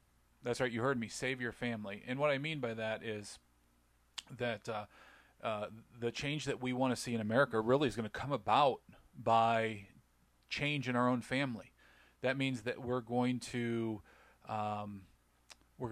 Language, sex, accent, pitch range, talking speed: English, male, American, 110-125 Hz, 175 wpm